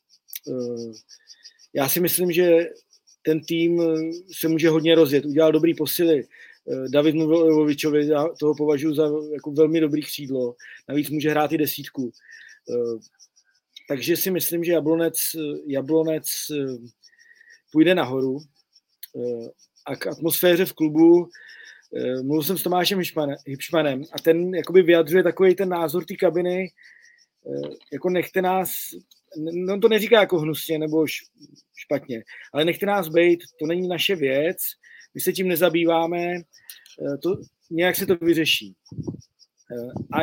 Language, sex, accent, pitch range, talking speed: Czech, male, native, 150-180 Hz, 120 wpm